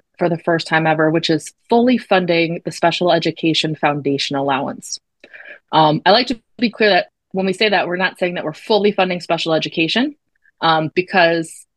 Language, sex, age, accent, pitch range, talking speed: English, female, 30-49, American, 155-185 Hz, 185 wpm